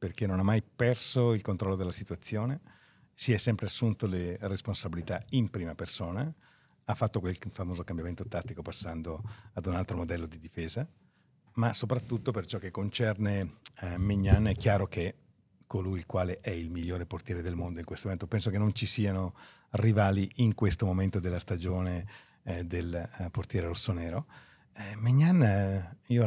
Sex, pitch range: male, 90-115 Hz